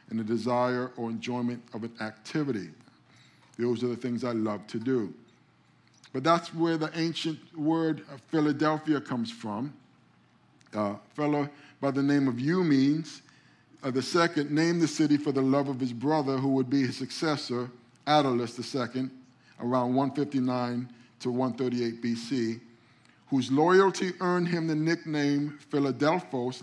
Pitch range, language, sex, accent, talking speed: 125-150 Hz, English, male, American, 145 wpm